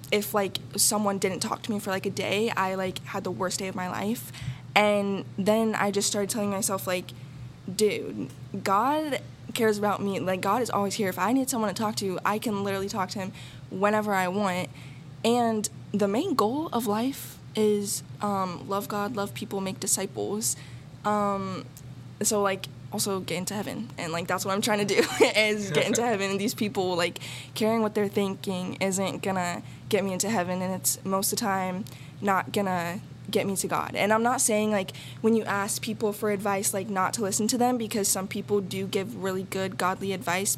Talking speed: 205 wpm